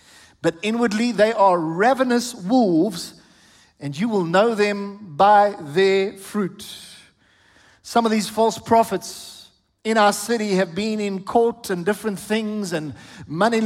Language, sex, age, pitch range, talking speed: English, male, 50-69, 200-255 Hz, 135 wpm